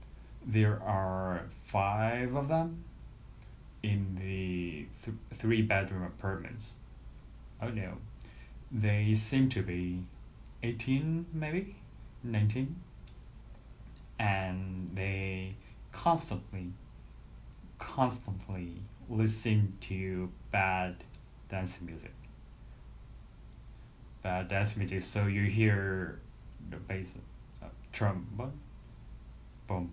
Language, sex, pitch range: Korean, male, 95-115 Hz